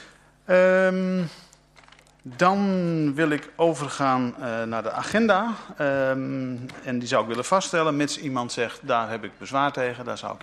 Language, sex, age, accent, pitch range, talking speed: Dutch, male, 50-69, Dutch, 125-165 Hz, 145 wpm